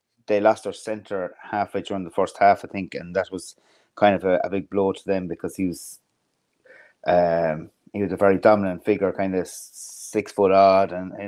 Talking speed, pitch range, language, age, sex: 205 wpm, 95-105 Hz, English, 30-49, male